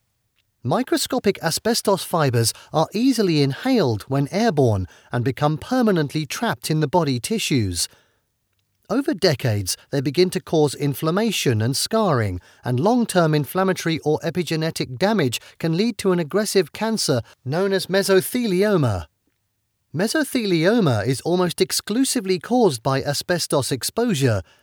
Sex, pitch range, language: male, 125-200 Hz, English